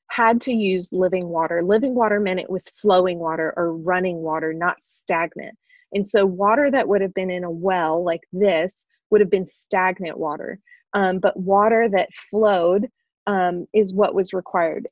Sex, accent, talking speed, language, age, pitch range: female, American, 175 wpm, English, 20-39, 180-225 Hz